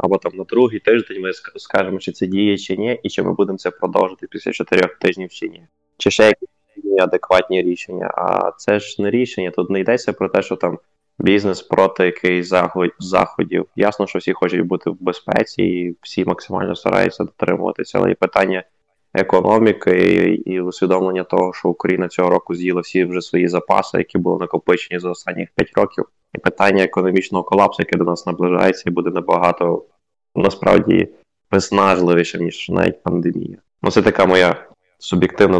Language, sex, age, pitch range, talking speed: Ukrainian, male, 20-39, 90-95 Hz, 170 wpm